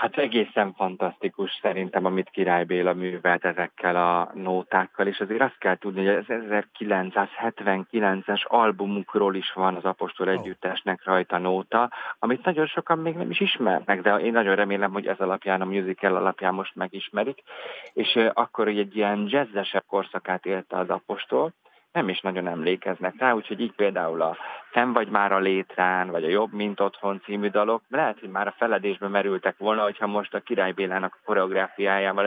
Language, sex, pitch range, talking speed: Hungarian, male, 95-105 Hz, 165 wpm